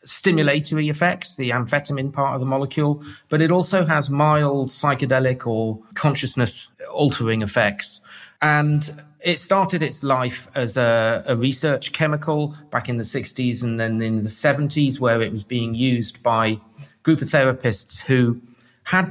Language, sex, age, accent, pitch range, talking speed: English, male, 30-49, British, 115-140 Hz, 150 wpm